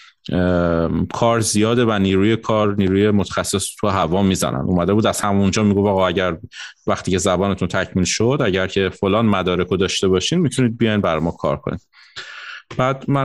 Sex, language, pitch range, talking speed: male, Persian, 90-125 Hz, 170 wpm